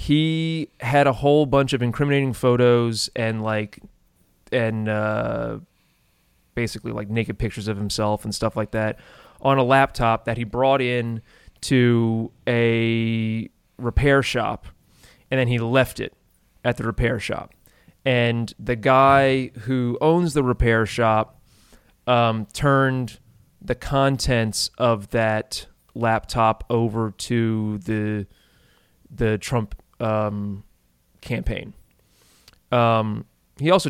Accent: American